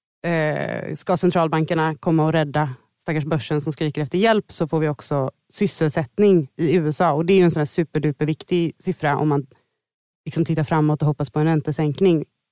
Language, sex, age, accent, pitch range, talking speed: Swedish, female, 30-49, native, 155-185 Hz, 180 wpm